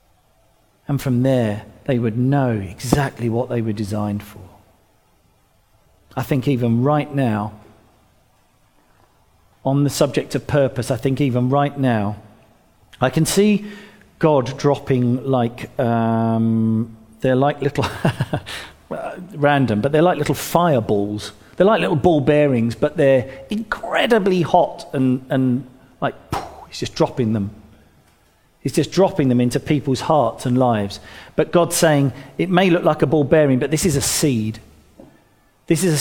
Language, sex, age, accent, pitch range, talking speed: English, male, 40-59, British, 115-155 Hz, 145 wpm